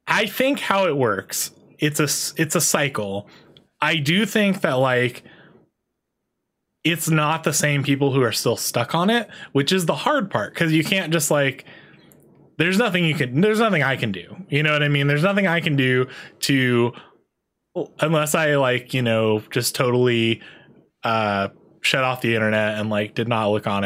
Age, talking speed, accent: 20-39, 185 wpm, American